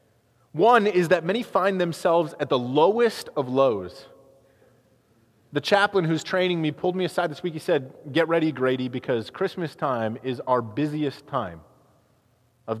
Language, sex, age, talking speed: English, male, 30-49, 160 wpm